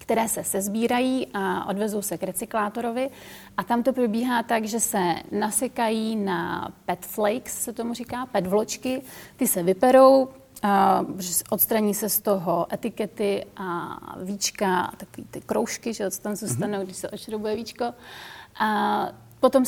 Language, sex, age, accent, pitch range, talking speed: Czech, female, 30-49, native, 195-240 Hz, 145 wpm